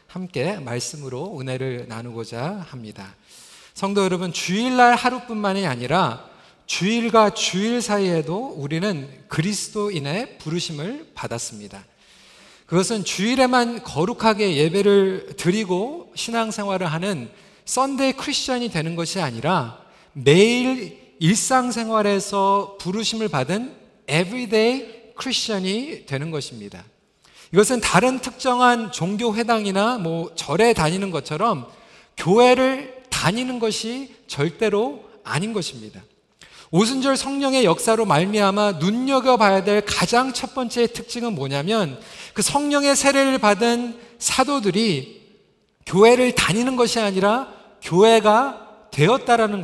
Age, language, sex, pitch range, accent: 40-59, Korean, male, 170-235 Hz, native